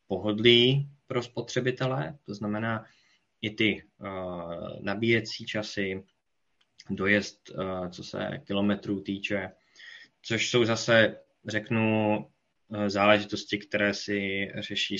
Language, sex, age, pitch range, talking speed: Czech, male, 20-39, 100-110 Hz, 90 wpm